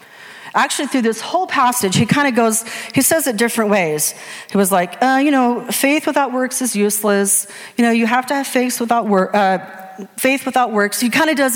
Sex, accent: female, American